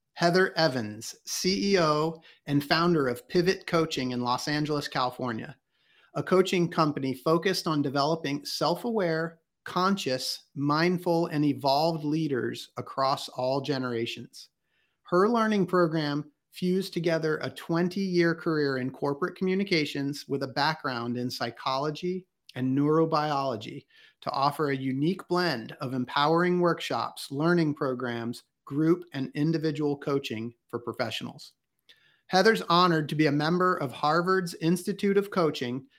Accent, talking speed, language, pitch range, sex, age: American, 120 wpm, English, 140-175 Hz, male, 40-59